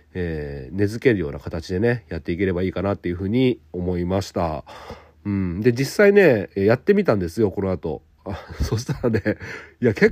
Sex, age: male, 40-59